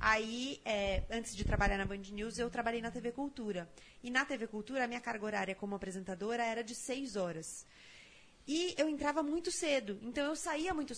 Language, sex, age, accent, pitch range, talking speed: Portuguese, female, 30-49, Brazilian, 200-290 Hz, 195 wpm